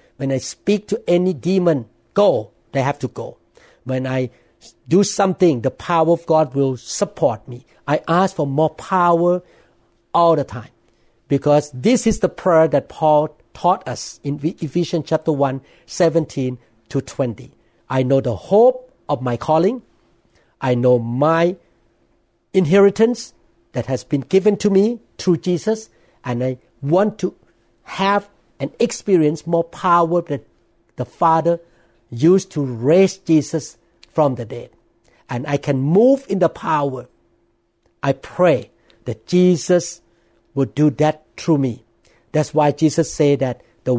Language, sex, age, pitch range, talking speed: English, male, 60-79, 125-175 Hz, 145 wpm